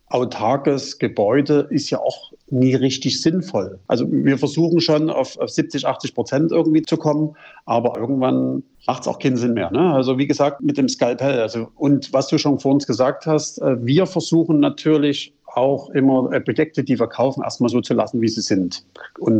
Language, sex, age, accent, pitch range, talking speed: German, male, 50-69, German, 120-150 Hz, 185 wpm